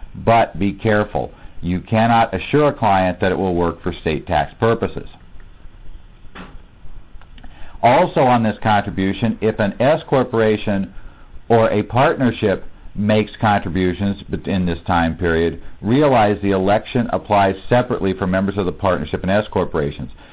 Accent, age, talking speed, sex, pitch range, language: American, 50-69, 135 wpm, male, 90-110 Hz, English